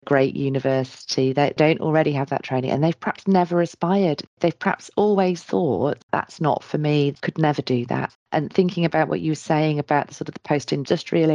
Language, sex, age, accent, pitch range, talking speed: English, female, 40-59, British, 150-190 Hz, 195 wpm